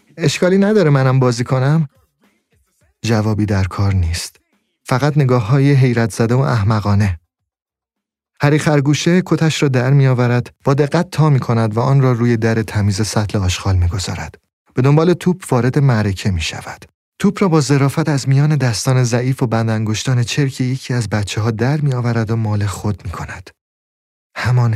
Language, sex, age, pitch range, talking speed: Persian, male, 30-49, 105-135 Hz, 160 wpm